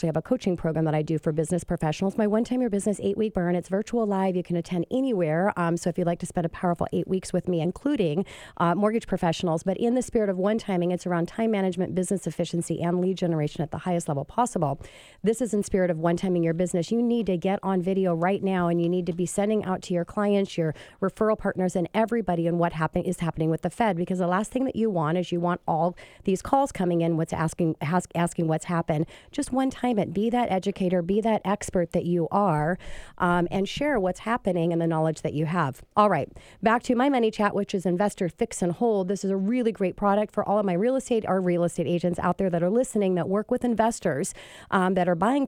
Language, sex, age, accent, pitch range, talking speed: English, female, 40-59, American, 170-205 Hz, 245 wpm